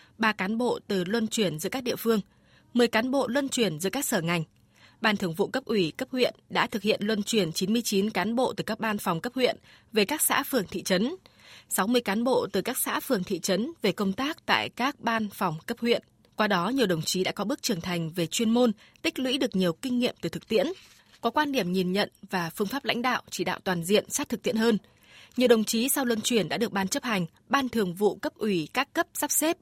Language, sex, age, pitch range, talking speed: Vietnamese, female, 20-39, 190-245 Hz, 250 wpm